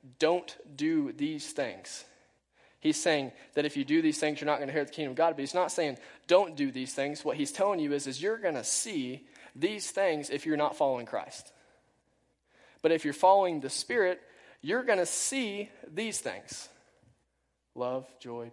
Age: 20-39